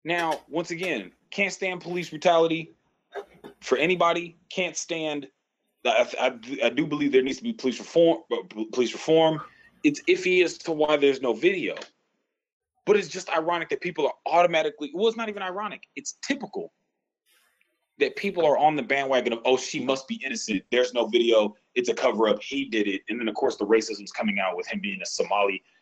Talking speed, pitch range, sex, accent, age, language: 195 wpm, 140-225 Hz, male, American, 30-49, English